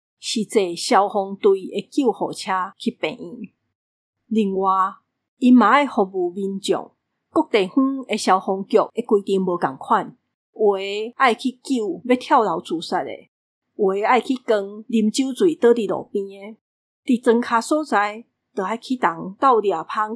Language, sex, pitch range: Chinese, female, 195-240 Hz